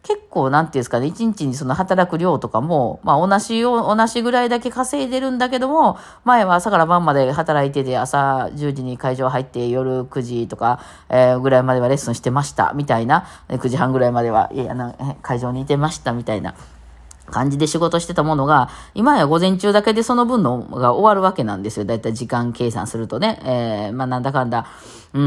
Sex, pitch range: female, 125-175 Hz